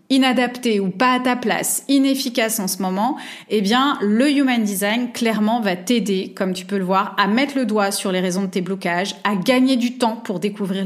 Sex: female